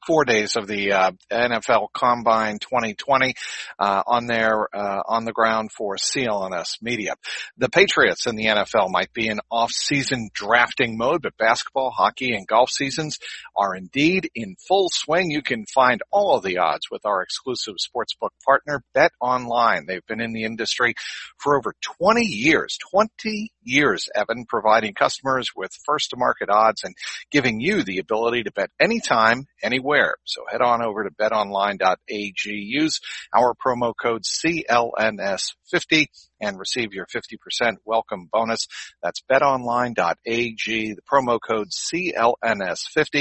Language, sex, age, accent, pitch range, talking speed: English, male, 50-69, American, 110-145 Hz, 145 wpm